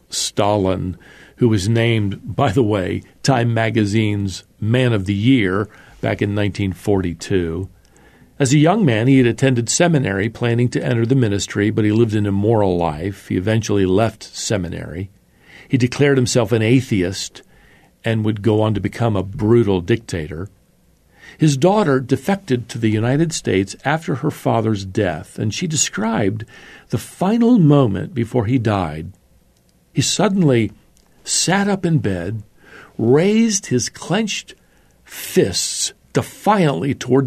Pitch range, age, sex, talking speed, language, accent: 95-135 Hz, 50-69, male, 135 wpm, English, American